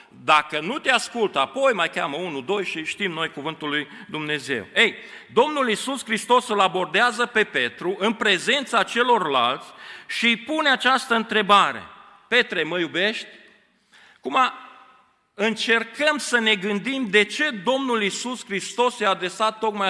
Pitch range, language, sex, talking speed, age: 175-225 Hz, Romanian, male, 145 wpm, 40-59